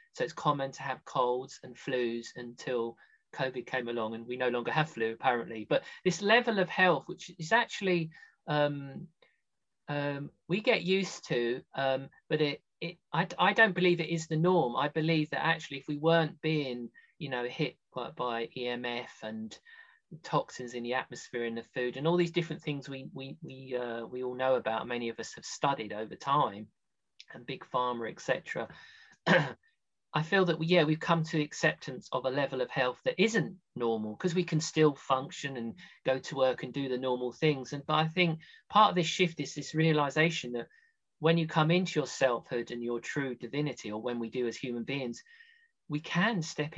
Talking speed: 195 wpm